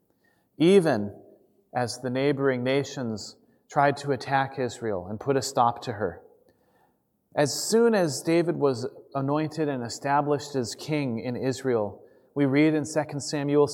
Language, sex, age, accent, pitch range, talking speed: English, male, 30-49, American, 125-155 Hz, 140 wpm